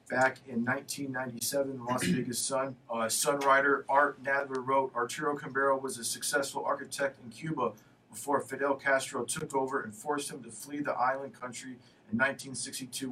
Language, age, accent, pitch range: English, 40-59, American, 120-140 Hz